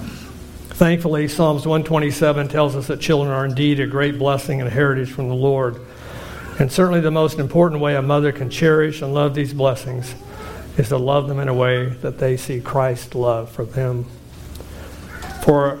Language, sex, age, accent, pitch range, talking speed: English, male, 60-79, American, 125-150 Hz, 180 wpm